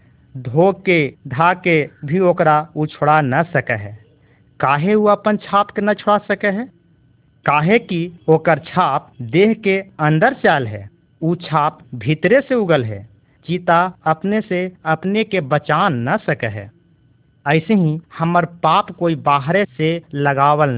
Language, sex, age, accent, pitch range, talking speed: Hindi, male, 50-69, native, 135-180 Hz, 145 wpm